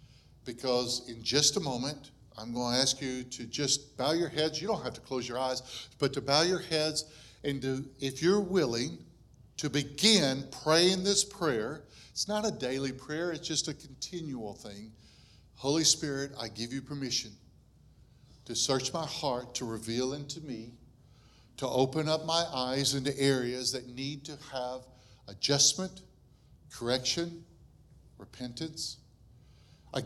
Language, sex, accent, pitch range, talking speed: English, male, American, 120-155 Hz, 150 wpm